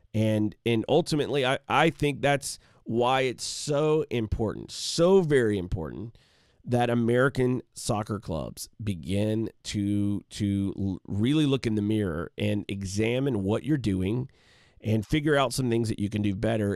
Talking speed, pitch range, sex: 145 wpm, 100-125 Hz, male